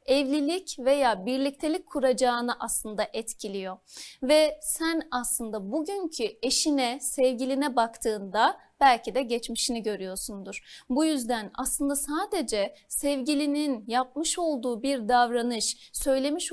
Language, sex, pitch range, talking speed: Turkish, female, 235-290 Hz, 100 wpm